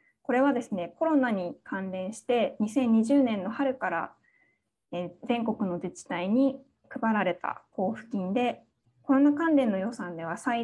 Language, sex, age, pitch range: Japanese, female, 20-39, 195-270 Hz